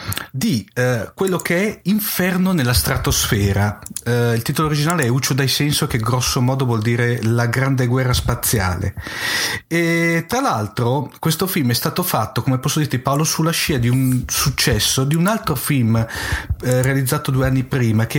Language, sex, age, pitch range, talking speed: Italian, male, 40-59, 120-155 Hz, 175 wpm